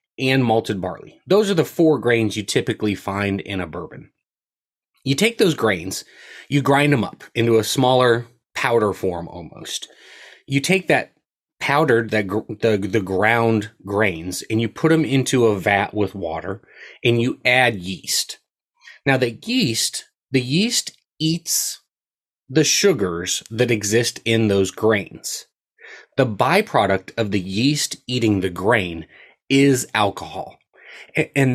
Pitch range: 105-135 Hz